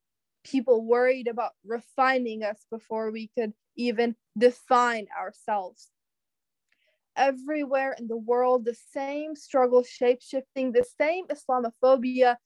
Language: English